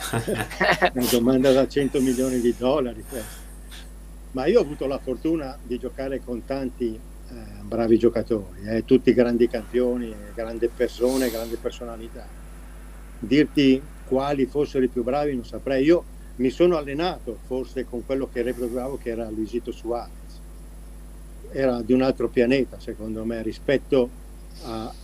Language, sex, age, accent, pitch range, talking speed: Italian, male, 50-69, native, 110-135 Hz, 145 wpm